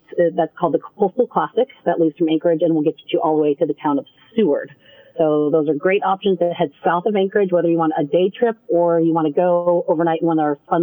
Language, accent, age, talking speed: English, American, 40-59, 265 wpm